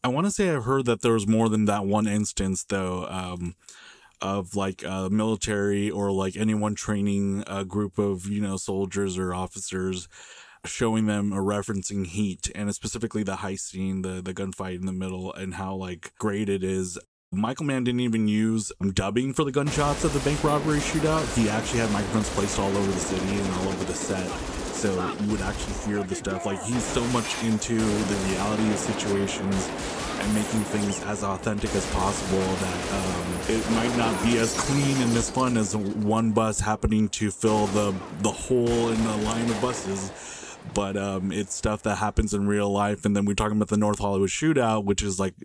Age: 20-39